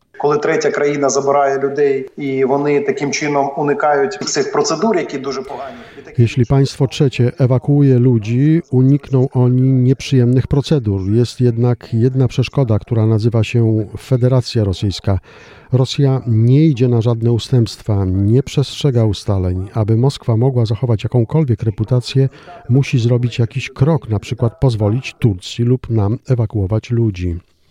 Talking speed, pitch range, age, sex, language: 130 wpm, 105-130 Hz, 40-59, male, Polish